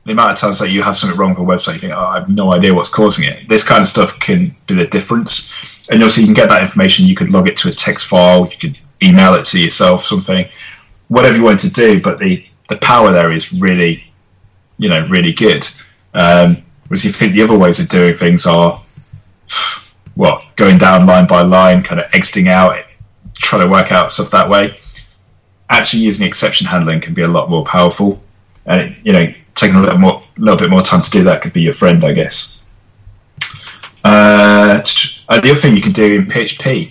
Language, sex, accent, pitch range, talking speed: English, male, British, 95-150 Hz, 225 wpm